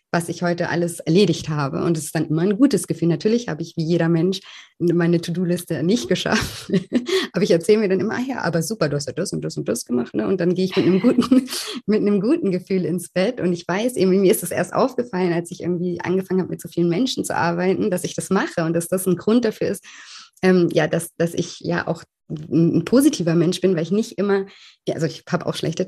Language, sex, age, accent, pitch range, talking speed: German, female, 20-39, German, 160-185 Hz, 250 wpm